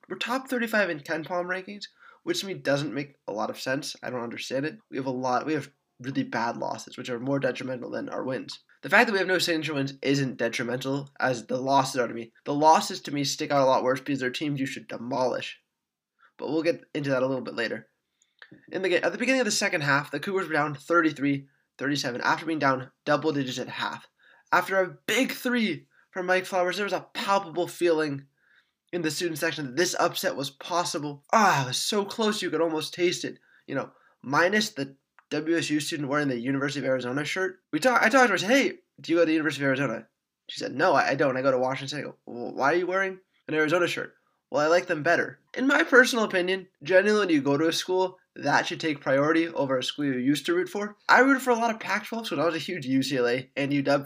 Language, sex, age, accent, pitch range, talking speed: English, male, 20-39, American, 140-185 Hz, 245 wpm